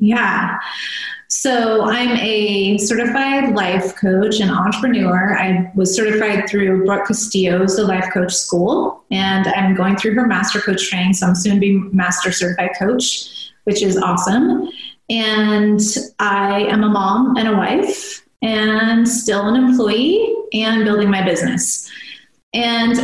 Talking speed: 145 wpm